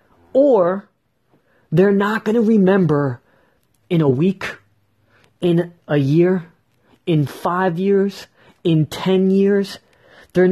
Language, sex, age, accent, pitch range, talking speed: English, male, 30-49, American, 120-190 Hz, 110 wpm